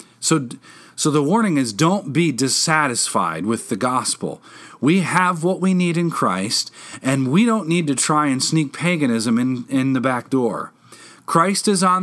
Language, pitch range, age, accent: English, 115-160 Hz, 40-59, American